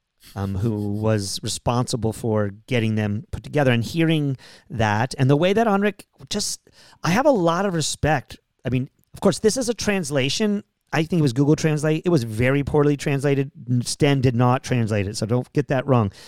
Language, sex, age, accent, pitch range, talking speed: English, male, 40-59, American, 115-140 Hz, 195 wpm